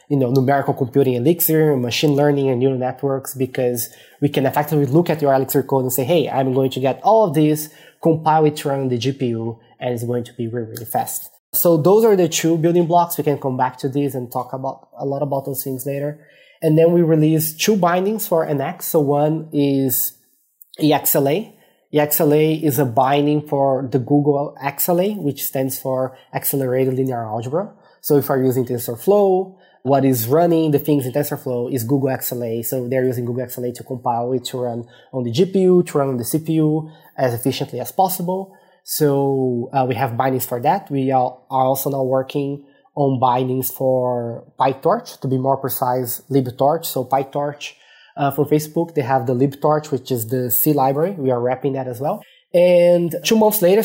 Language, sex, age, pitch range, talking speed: English, male, 20-39, 130-155 Hz, 195 wpm